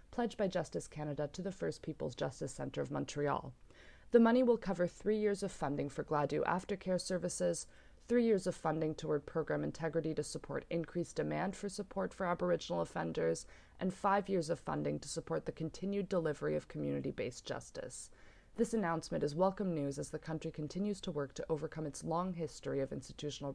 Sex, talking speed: female, 180 wpm